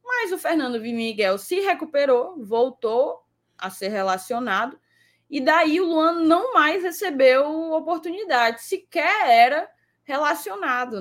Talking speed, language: 115 wpm, Portuguese